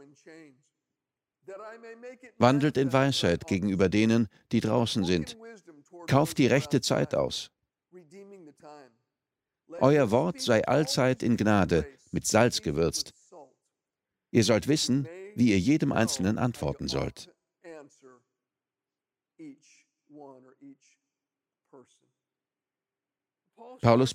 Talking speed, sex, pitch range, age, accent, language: 80 wpm, male, 120-175 Hz, 50-69, German, German